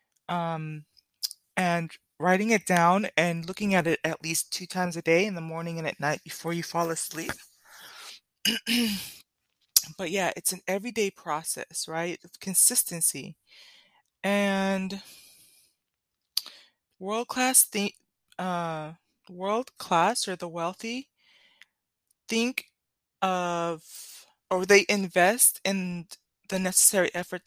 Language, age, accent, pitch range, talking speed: English, 20-39, American, 170-210 Hz, 115 wpm